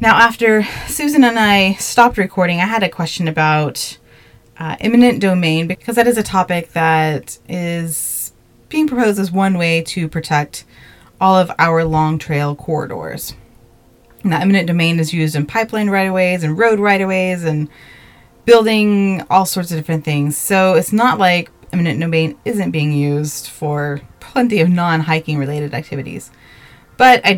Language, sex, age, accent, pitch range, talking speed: English, female, 20-39, American, 155-195 Hz, 155 wpm